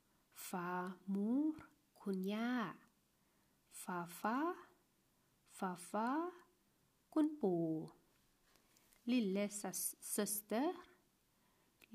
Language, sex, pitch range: Thai, female, 180-230 Hz